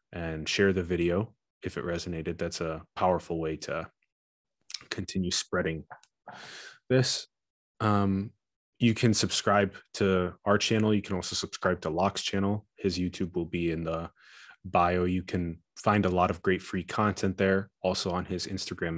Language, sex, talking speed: English, male, 160 wpm